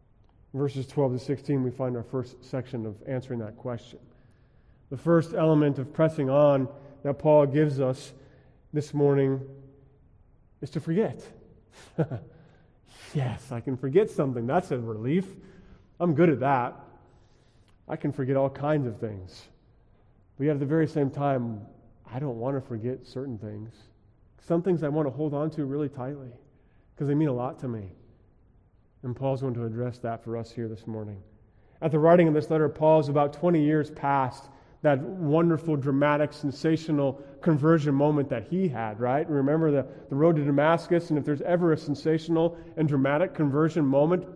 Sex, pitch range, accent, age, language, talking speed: male, 125-155 Hz, American, 30-49, English, 170 wpm